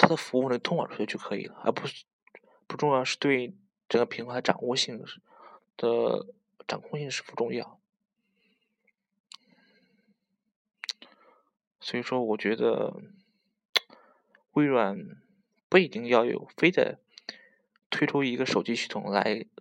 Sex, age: male, 20-39